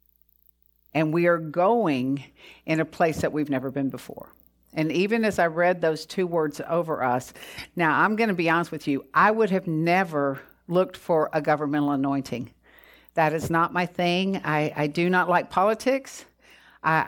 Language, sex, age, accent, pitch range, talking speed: English, female, 50-69, American, 150-190 Hz, 180 wpm